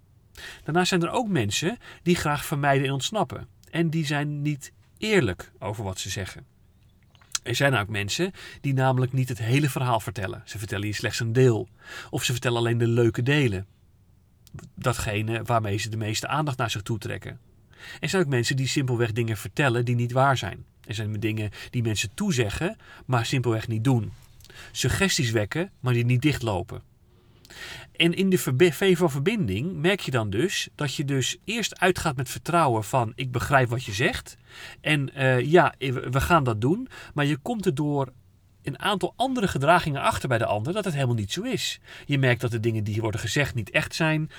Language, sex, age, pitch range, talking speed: Dutch, male, 40-59, 115-150 Hz, 190 wpm